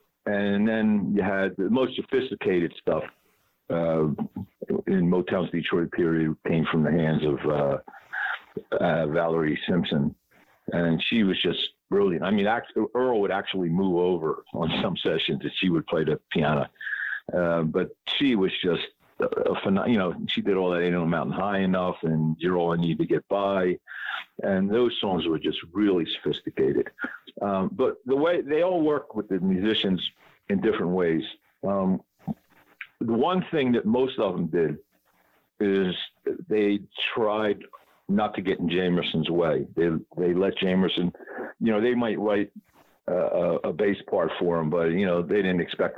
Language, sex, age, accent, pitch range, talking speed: English, male, 50-69, American, 85-110 Hz, 165 wpm